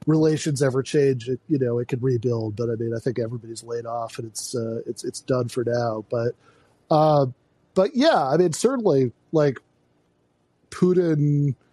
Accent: American